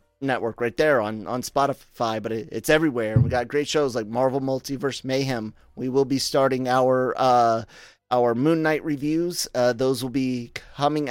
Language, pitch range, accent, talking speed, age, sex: English, 120-140 Hz, American, 180 wpm, 30-49, male